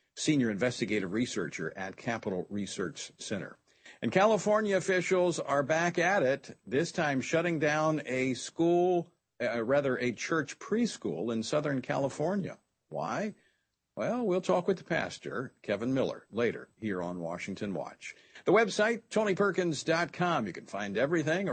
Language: English